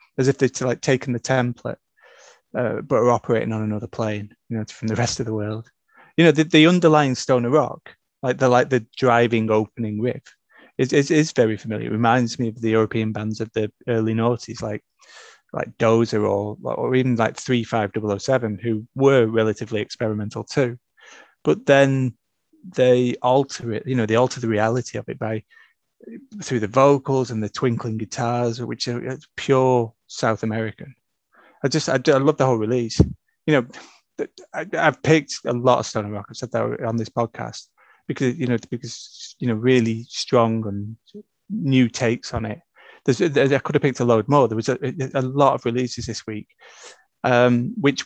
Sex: male